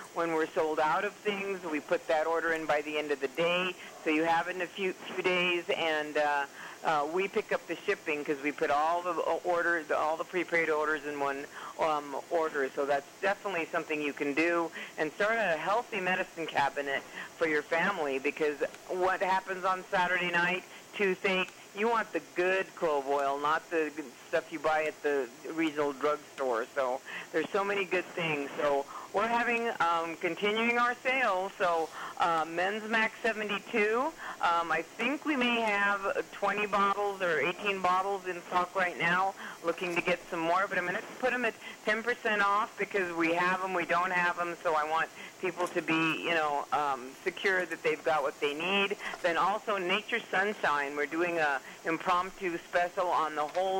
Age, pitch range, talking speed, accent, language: 50-69, 160-195 Hz, 190 wpm, American, English